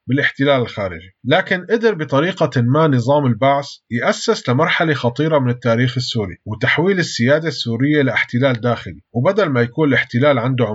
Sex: male